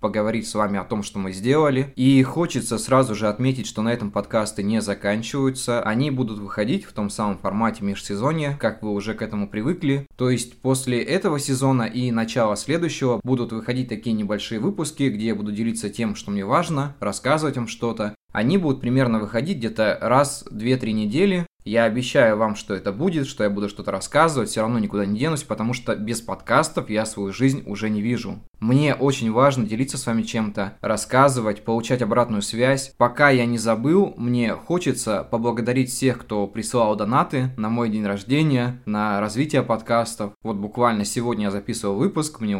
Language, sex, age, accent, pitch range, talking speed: Russian, male, 20-39, native, 110-130 Hz, 180 wpm